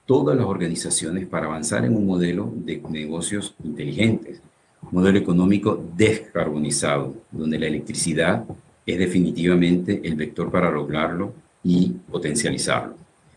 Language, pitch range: Spanish, 80-95 Hz